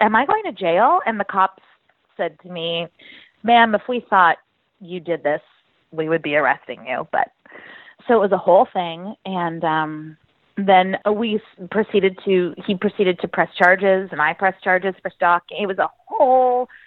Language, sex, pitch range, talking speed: English, female, 160-210 Hz, 180 wpm